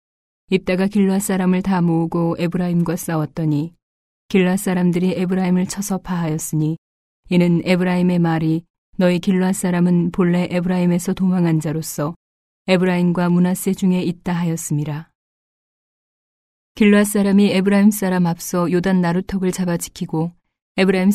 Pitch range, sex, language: 170-190 Hz, female, Korean